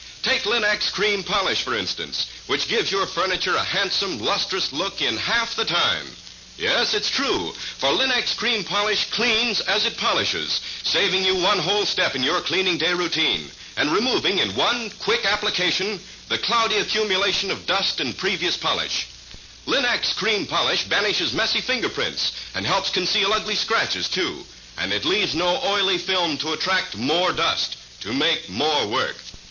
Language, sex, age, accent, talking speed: English, male, 60-79, American, 160 wpm